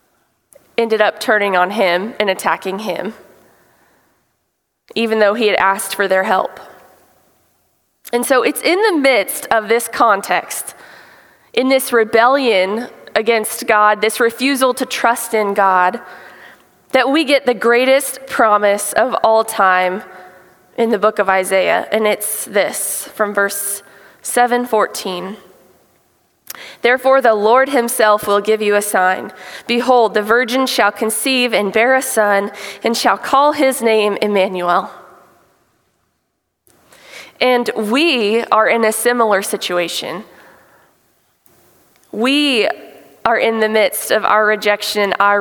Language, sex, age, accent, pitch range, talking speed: English, female, 20-39, American, 195-240 Hz, 125 wpm